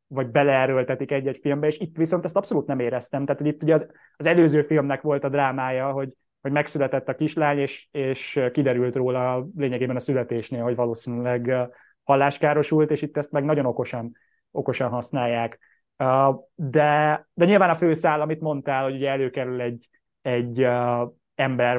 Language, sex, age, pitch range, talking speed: Hungarian, male, 20-39, 125-155 Hz, 160 wpm